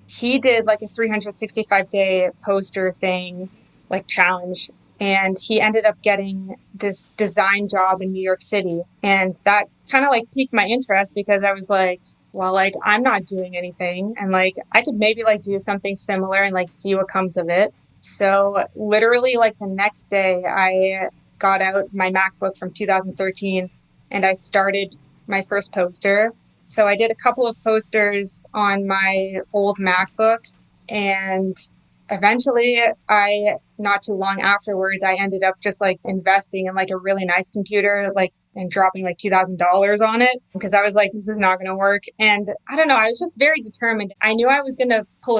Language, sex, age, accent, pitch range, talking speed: English, female, 20-39, American, 190-220 Hz, 180 wpm